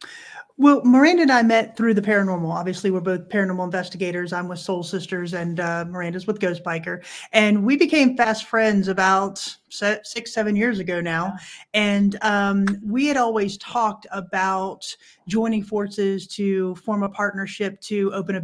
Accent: American